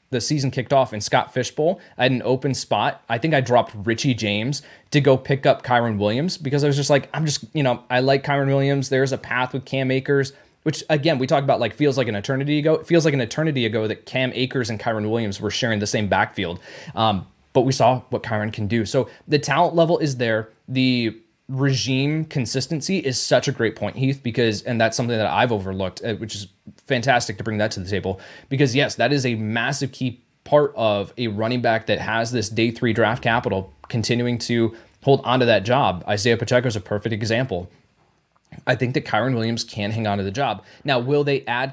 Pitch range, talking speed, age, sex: 115-140 Hz, 225 wpm, 20-39, male